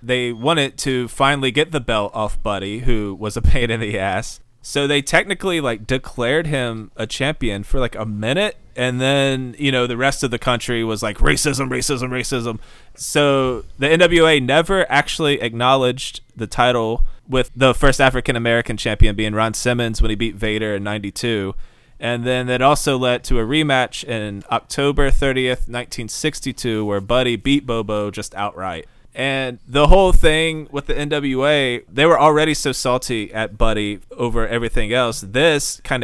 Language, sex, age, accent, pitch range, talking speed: English, male, 20-39, American, 110-135 Hz, 170 wpm